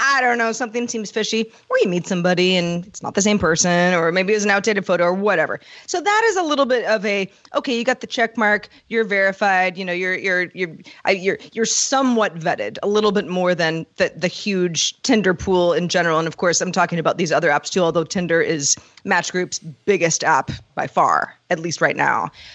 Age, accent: 30-49, American